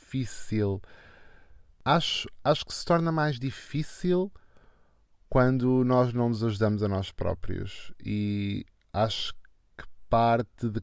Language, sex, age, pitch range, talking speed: Portuguese, male, 20-39, 100-120 Hz, 115 wpm